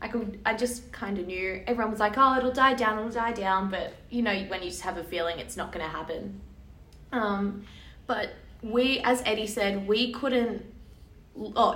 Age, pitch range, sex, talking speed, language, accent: 20-39, 180-230 Hz, female, 200 wpm, English, Australian